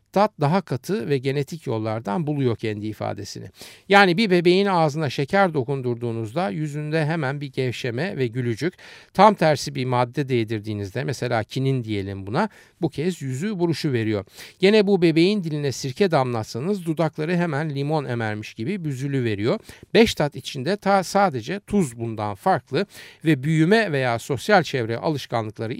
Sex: male